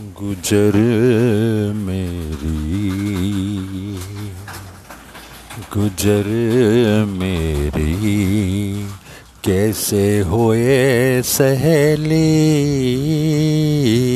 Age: 50-69